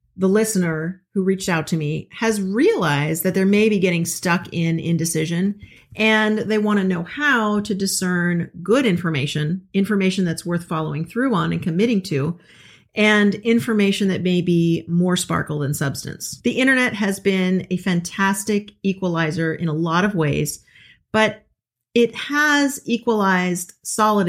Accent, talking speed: American, 150 wpm